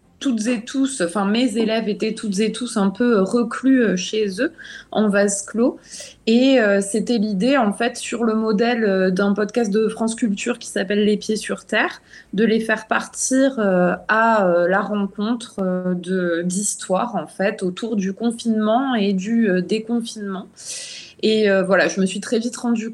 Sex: female